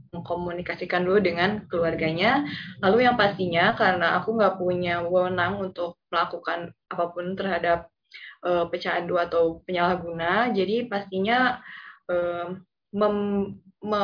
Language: Indonesian